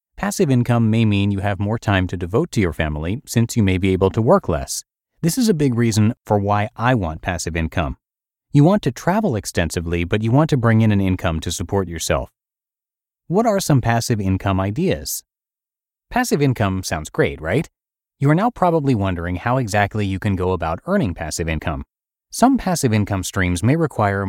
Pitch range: 95-130 Hz